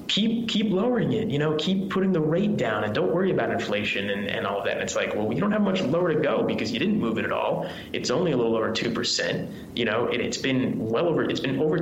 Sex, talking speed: male, 285 wpm